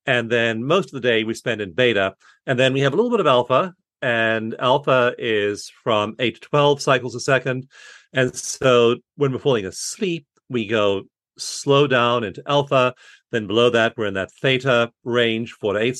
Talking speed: 195 wpm